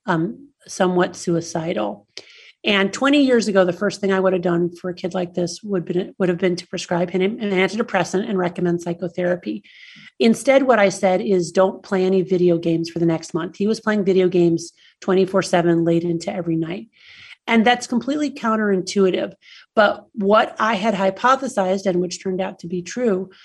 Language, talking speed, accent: English, 185 wpm, American